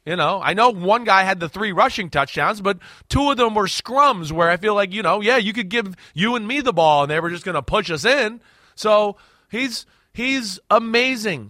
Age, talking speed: 30-49, 235 wpm